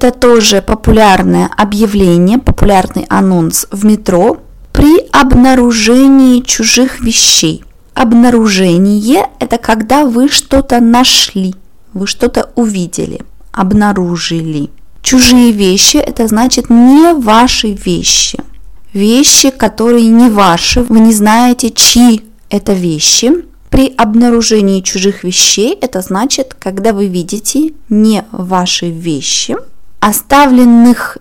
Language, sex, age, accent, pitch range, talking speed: Russian, female, 20-39, native, 195-245 Hz, 100 wpm